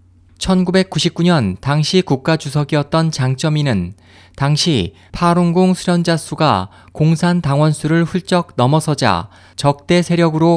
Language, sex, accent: Korean, male, native